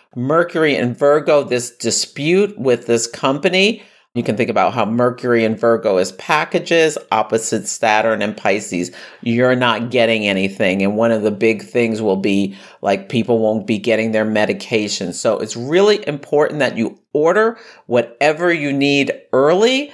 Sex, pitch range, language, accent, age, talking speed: male, 115-145 Hz, English, American, 50-69, 155 wpm